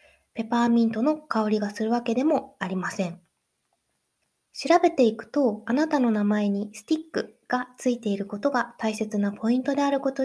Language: Japanese